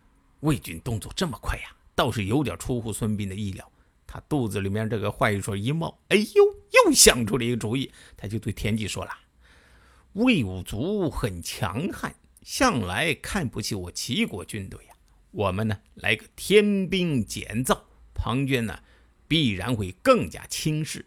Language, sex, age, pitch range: Chinese, male, 50-69, 100-165 Hz